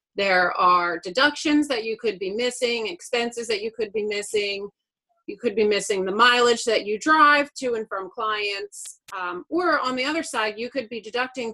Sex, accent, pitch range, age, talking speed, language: female, American, 195-250 Hz, 30-49, 190 wpm, English